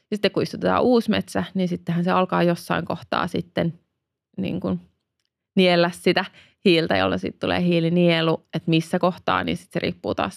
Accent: native